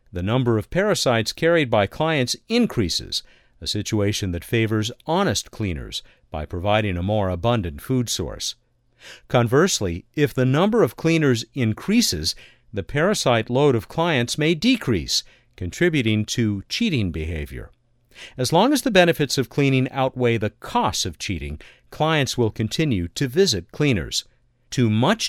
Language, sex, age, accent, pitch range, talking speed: English, male, 50-69, American, 105-155 Hz, 140 wpm